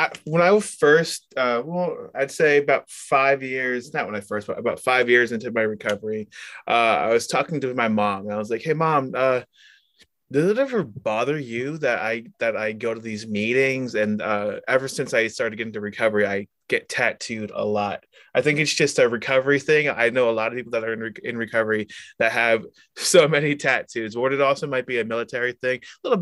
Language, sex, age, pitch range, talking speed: English, male, 20-39, 110-135 Hz, 220 wpm